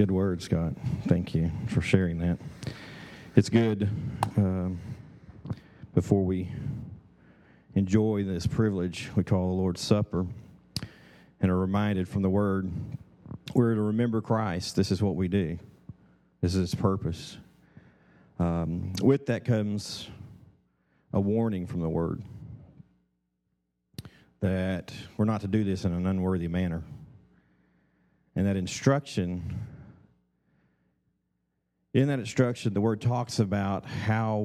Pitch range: 85-105 Hz